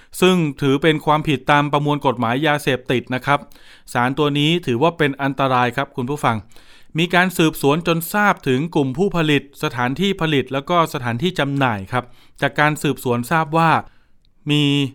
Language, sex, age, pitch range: Thai, male, 20-39, 130-155 Hz